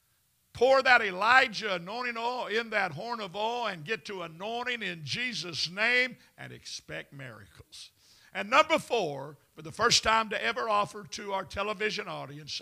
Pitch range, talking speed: 170-240 Hz, 160 wpm